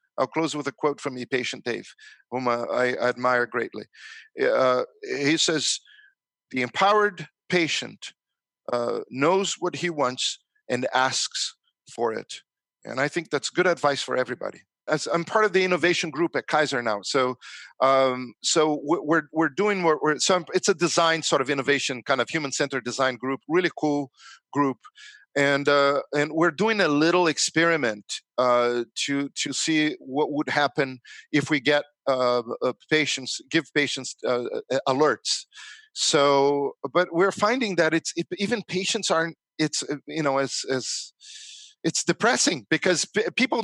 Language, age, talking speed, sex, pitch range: English, 50-69, 160 wpm, male, 140-185 Hz